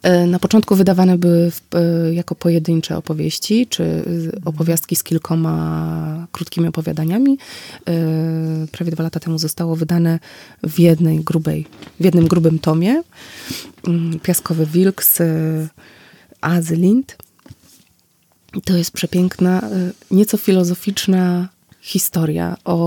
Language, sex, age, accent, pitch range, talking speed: Polish, female, 20-39, native, 165-190 Hz, 95 wpm